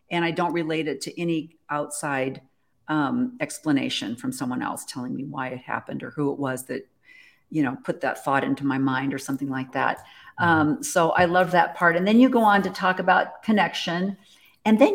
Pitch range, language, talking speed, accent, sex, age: 155-210 Hz, English, 210 wpm, American, female, 50-69